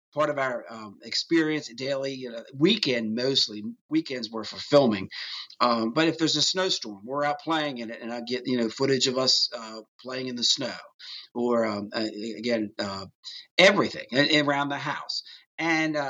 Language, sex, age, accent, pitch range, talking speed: English, male, 40-59, American, 115-150 Hz, 180 wpm